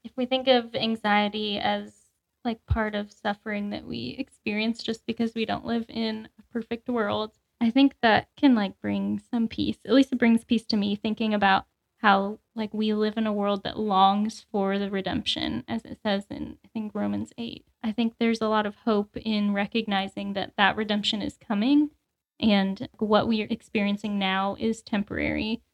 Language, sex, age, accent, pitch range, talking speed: English, female, 10-29, American, 200-225 Hz, 185 wpm